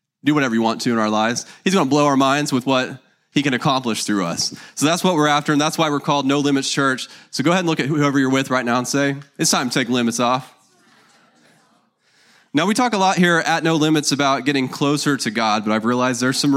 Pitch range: 125-155 Hz